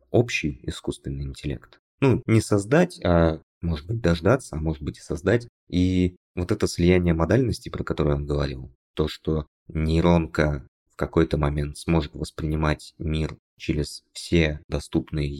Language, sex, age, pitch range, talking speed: Russian, male, 20-39, 75-90 Hz, 140 wpm